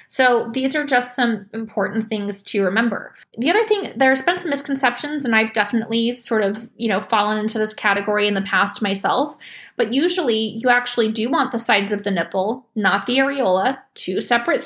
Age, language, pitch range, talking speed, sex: 20-39, English, 205-250 Hz, 190 wpm, female